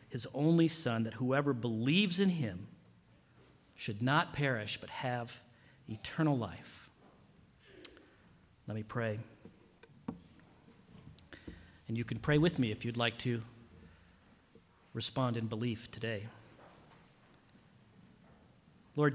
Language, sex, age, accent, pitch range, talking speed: English, male, 50-69, American, 110-145 Hz, 105 wpm